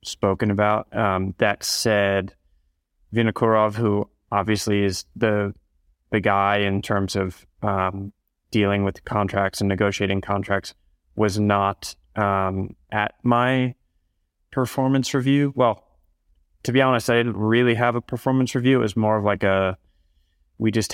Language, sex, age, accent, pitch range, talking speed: English, male, 20-39, American, 95-115 Hz, 140 wpm